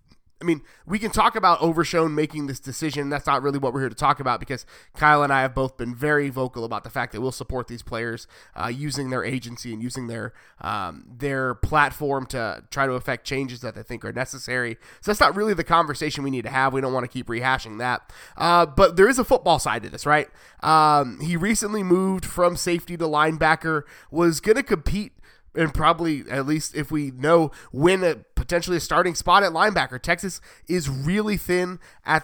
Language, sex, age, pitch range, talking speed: English, male, 20-39, 135-170 Hz, 215 wpm